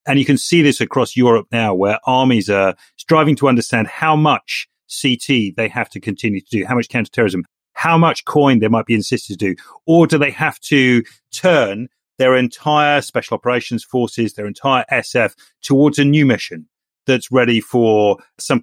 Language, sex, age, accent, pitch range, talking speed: English, male, 40-59, British, 115-155 Hz, 185 wpm